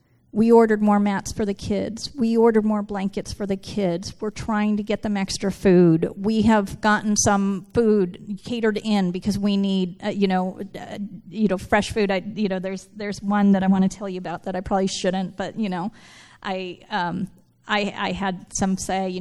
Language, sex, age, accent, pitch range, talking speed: English, female, 40-59, American, 195-235 Hz, 210 wpm